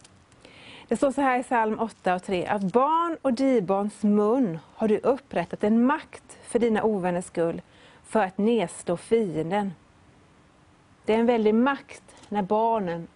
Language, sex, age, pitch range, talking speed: Swedish, female, 30-49, 190-240 Hz, 155 wpm